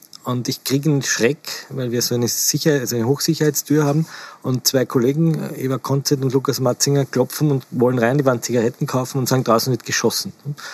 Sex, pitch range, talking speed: male, 120-140 Hz, 195 wpm